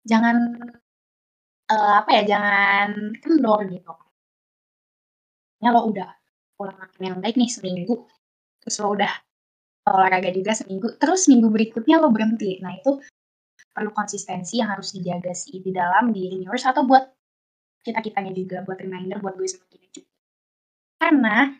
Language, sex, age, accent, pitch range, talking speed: Indonesian, female, 20-39, native, 195-250 Hz, 135 wpm